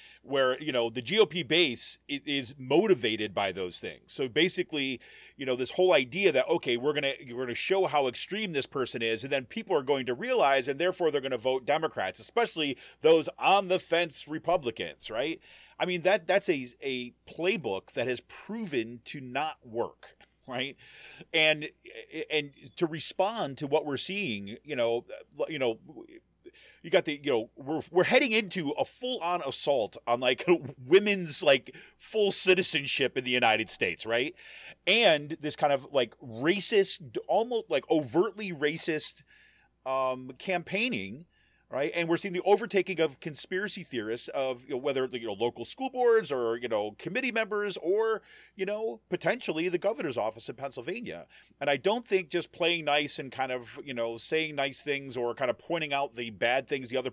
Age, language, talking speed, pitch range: 40-59, English, 180 wpm, 130-190 Hz